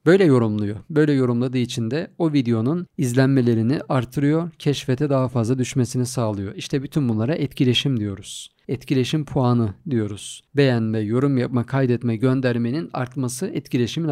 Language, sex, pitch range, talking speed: Turkish, male, 120-145 Hz, 130 wpm